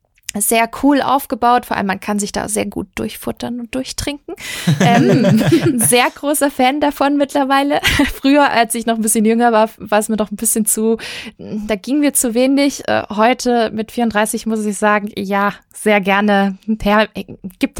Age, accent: 20-39, German